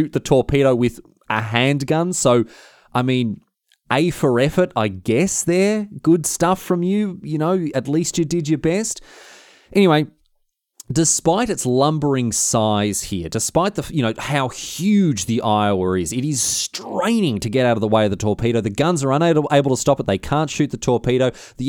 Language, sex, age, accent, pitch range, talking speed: English, male, 30-49, Australian, 105-145 Hz, 185 wpm